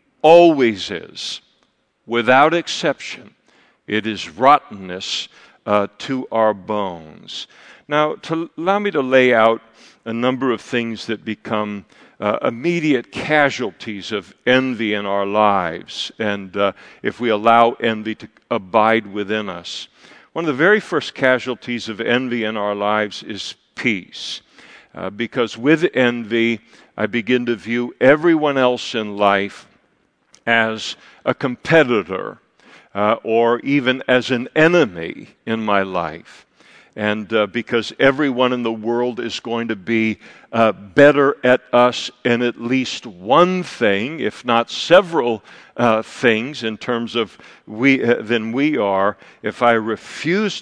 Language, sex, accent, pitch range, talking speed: English, male, American, 110-130 Hz, 135 wpm